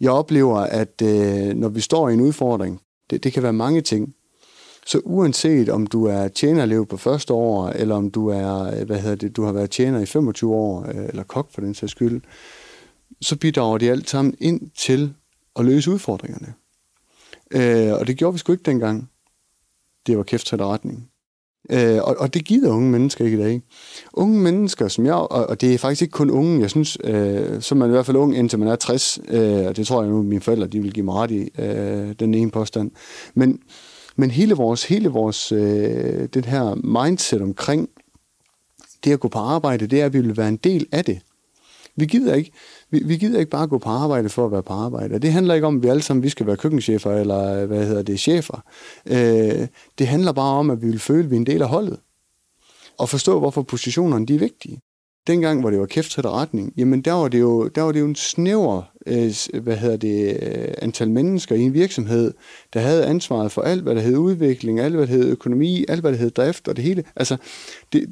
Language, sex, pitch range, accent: Danish, male, 110-150 Hz, native